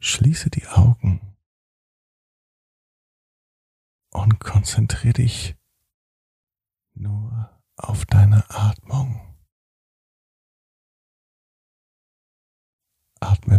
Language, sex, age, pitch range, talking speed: German, male, 50-69, 95-115 Hz, 50 wpm